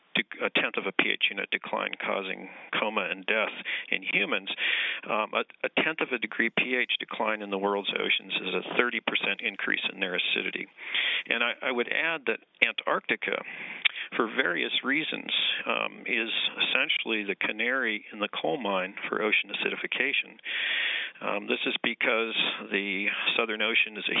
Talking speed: 160 wpm